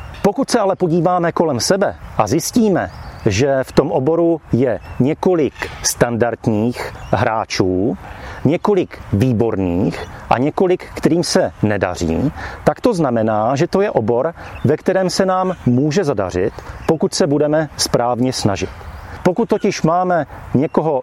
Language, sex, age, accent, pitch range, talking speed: Czech, male, 40-59, native, 115-170 Hz, 130 wpm